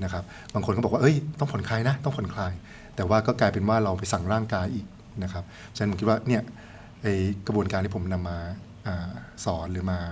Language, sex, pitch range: Thai, male, 95-115 Hz